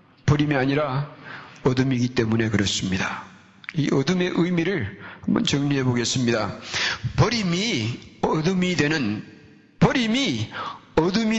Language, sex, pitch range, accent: Korean, male, 125-185 Hz, native